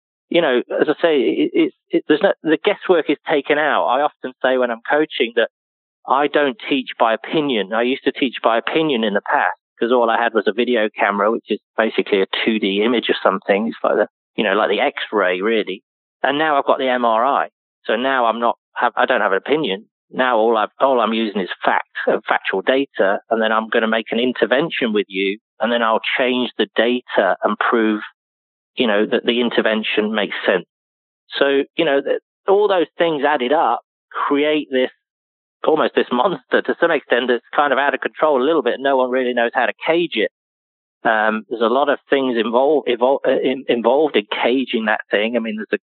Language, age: English, 30-49